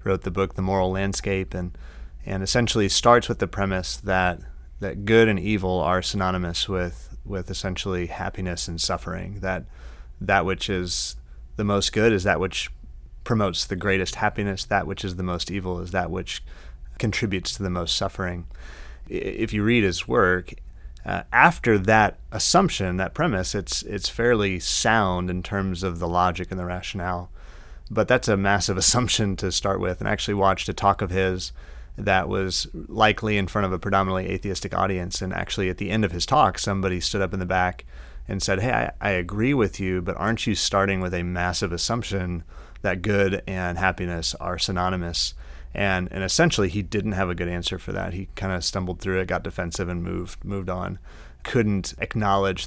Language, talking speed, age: English, 185 wpm, 30-49